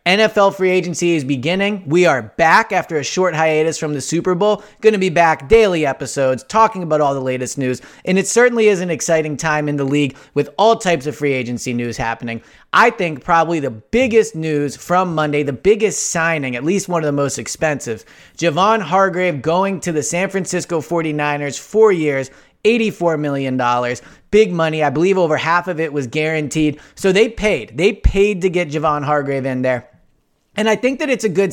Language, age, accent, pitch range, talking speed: English, 30-49, American, 145-180 Hz, 200 wpm